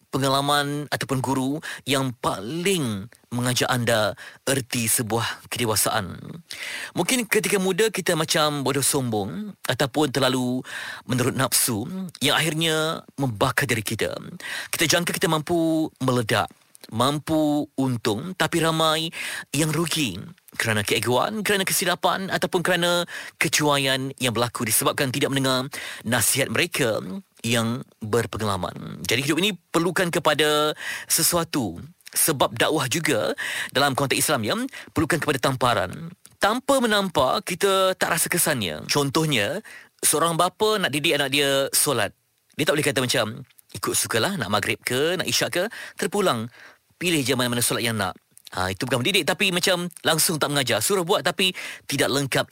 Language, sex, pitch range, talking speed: Malay, male, 125-175 Hz, 135 wpm